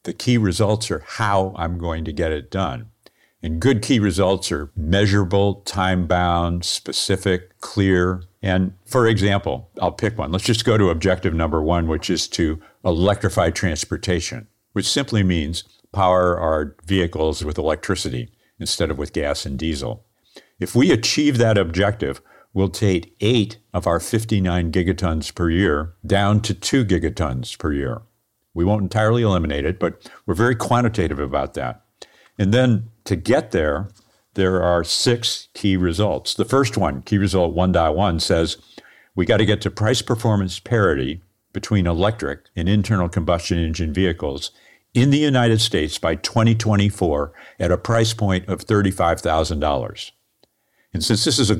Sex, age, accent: male, 50-69, American